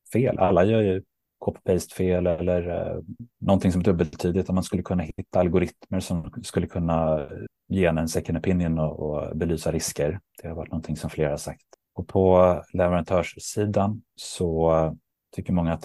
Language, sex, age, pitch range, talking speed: Swedish, male, 30-49, 80-95 Hz, 165 wpm